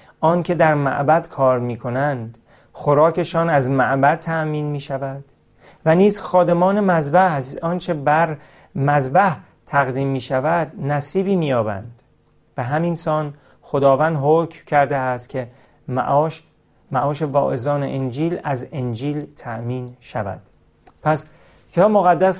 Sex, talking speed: male, 110 wpm